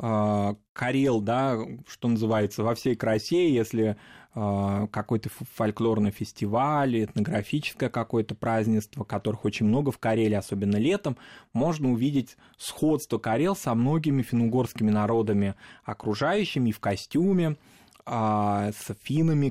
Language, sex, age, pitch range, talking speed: Russian, male, 20-39, 110-140 Hz, 110 wpm